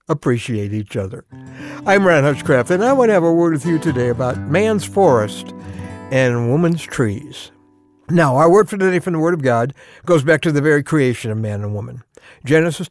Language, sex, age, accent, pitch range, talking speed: English, male, 60-79, American, 140-195 Hz, 200 wpm